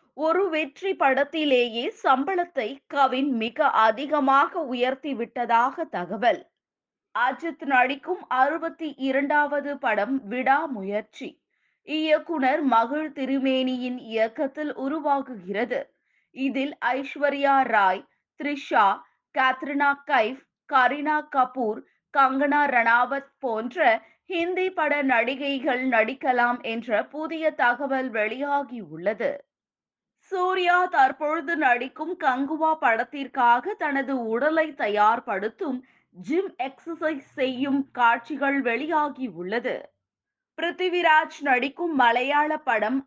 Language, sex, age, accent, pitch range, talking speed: Tamil, female, 20-39, native, 245-310 Hz, 80 wpm